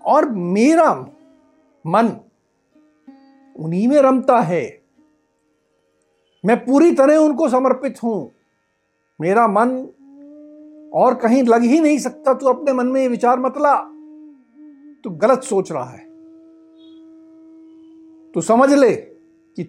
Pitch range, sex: 220-310 Hz, male